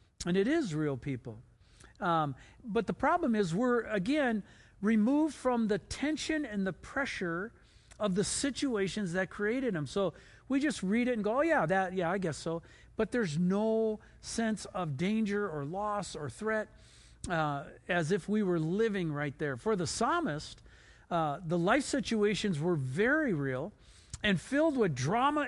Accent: American